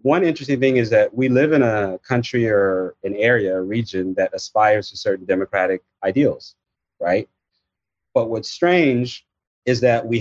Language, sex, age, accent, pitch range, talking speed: English, male, 30-49, American, 105-135 Hz, 165 wpm